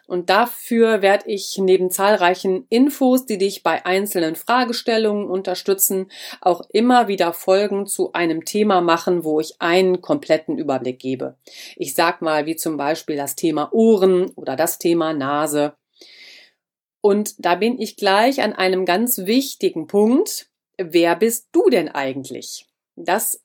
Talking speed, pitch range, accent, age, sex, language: 145 wpm, 175-240 Hz, German, 40-59, female, German